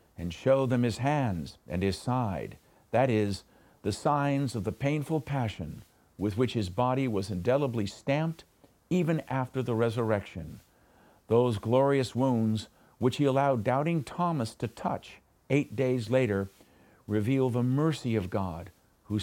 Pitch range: 105-140 Hz